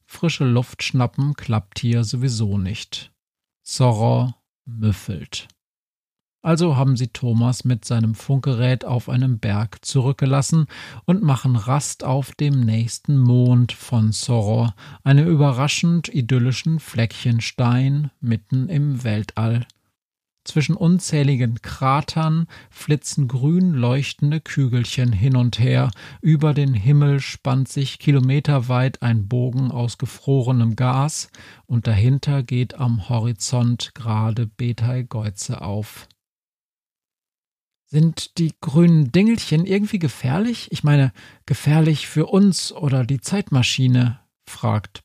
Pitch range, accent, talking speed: 115-145 Hz, German, 110 wpm